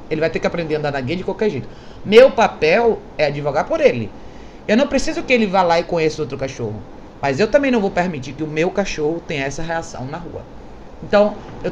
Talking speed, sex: 235 wpm, male